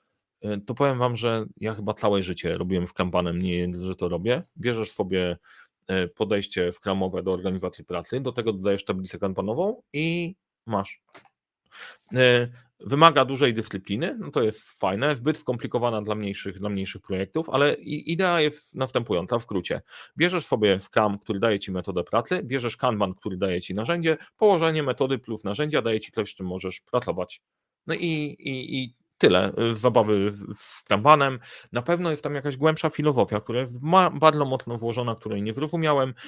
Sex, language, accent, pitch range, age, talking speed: male, Polish, native, 100-145 Hz, 40-59, 160 wpm